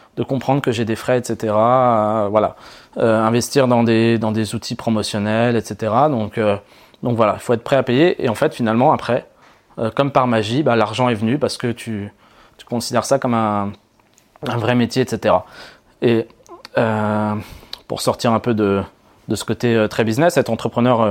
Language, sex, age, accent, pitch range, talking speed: French, male, 20-39, French, 110-130 Hz, 190 wpm